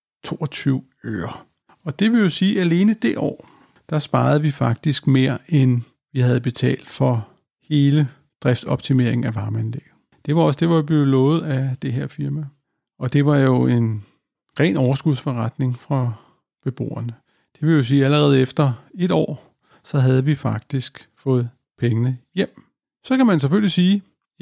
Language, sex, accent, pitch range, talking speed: Danish, male, native, 125-155 Hz, 165 wpm